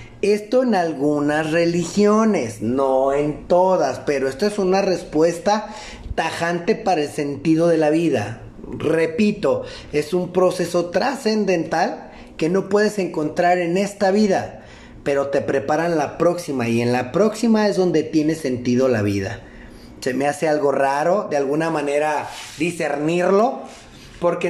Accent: Mexican